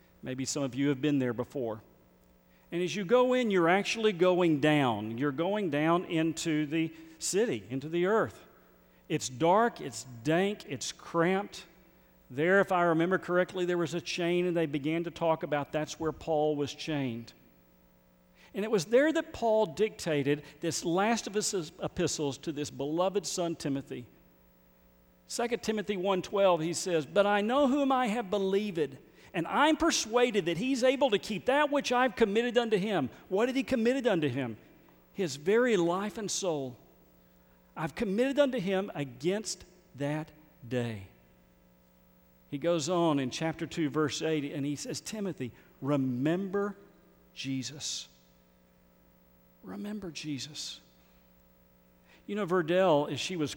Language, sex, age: English, male, 50-69